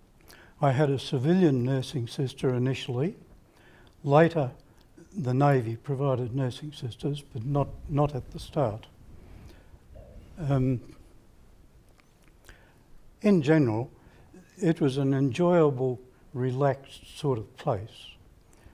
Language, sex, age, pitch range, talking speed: English, male, 60-79, 120-140 Hz, 95 wpm